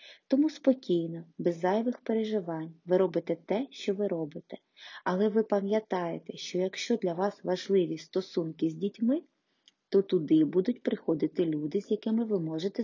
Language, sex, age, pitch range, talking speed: Ukrainian, female, 20-39, 170-220 Hz, 145 wpm